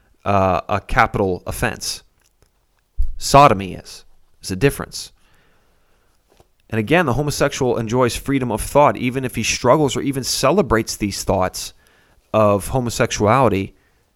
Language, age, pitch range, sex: English, 30-49, 100-140 Hz, male